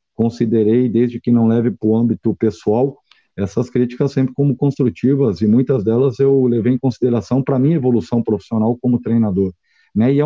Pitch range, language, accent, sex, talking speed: 110-135 Hz, Portuguese, Brazilian, male, 175 wpm